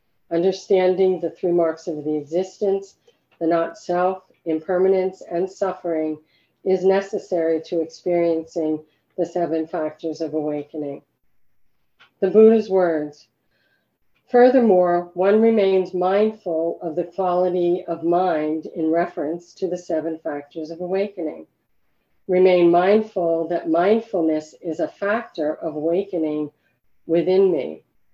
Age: 50-69